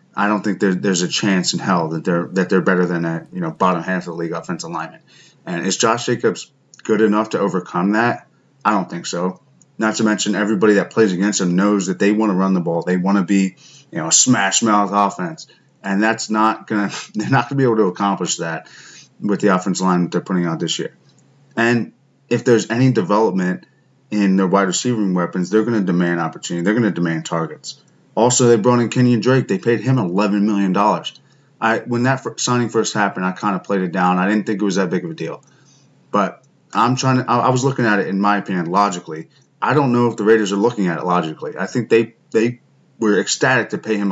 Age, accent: 20-39, American